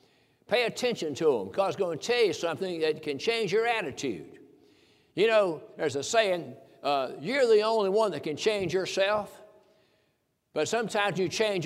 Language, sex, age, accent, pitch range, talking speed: English, male, 60-79, American, 165-215 Hz, 170 wpm